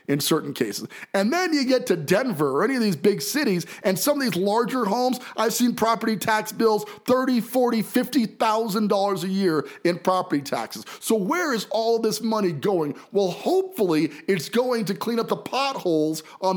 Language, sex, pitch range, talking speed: English, male, 180-245 Hz, 190 wpm